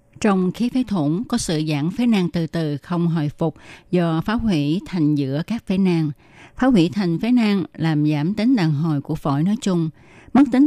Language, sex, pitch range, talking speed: Vietnamese, female, 155-200 Hz, 215 wpm